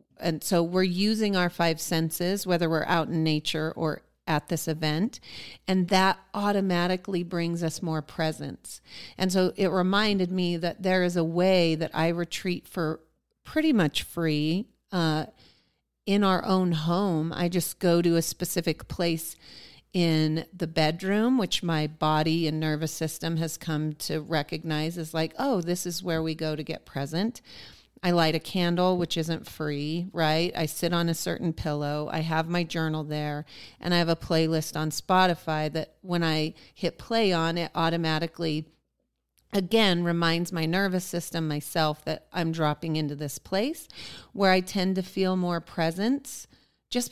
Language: English